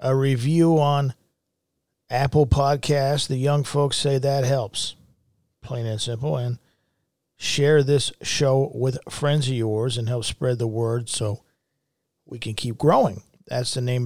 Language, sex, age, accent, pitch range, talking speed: English, male, 50-69, American, 115-140 Hz, 150 wpm